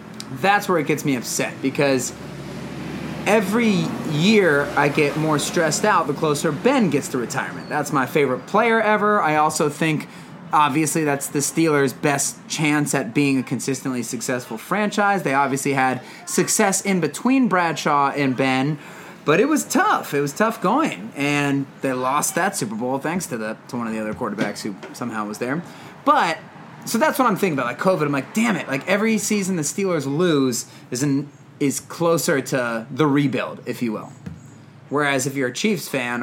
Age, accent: 30-49, American